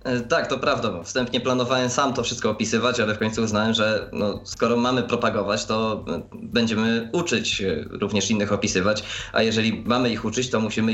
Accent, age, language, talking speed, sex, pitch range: native, 20-39, Polish, 165 wpm, male, 105-125 Hz